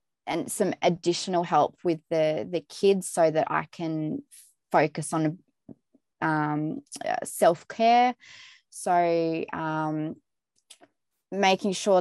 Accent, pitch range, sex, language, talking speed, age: Australian, 155-195 Hz, female, English, 100 wpm, 20-39